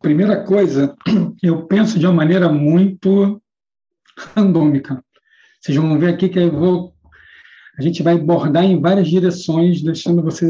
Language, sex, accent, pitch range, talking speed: Portuguese, male, Brazilian, 155-190 Hz, 145 wpm